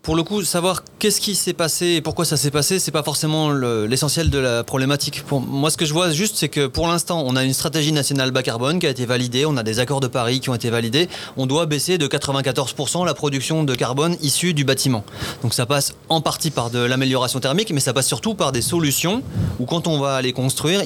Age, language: 30-49, French